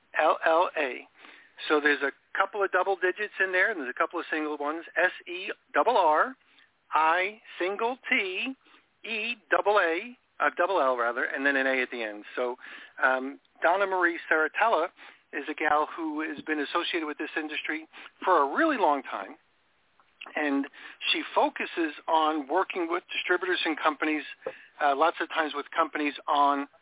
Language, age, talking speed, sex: English, 50-69, 170 wpm, male